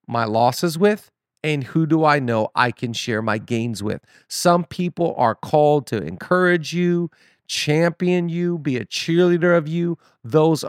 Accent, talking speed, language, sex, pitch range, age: American, 165 wpm, English, male, 120-160 Hz, 40-59